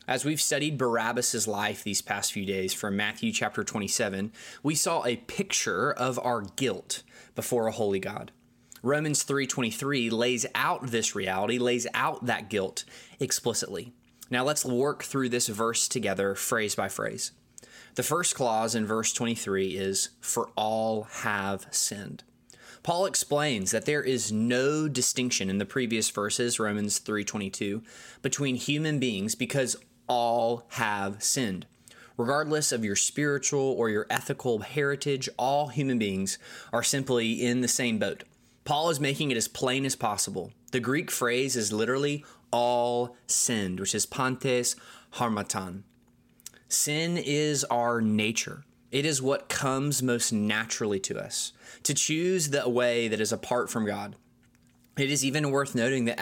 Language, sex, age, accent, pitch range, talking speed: English, male, 20-39, American, 110-140 Hz, 150 wpm